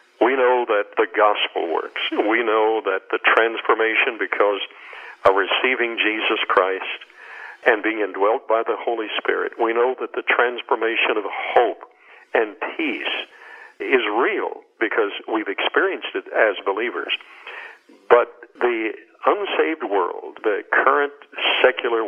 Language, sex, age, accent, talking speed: English, male, 60-79, American, 130 wpm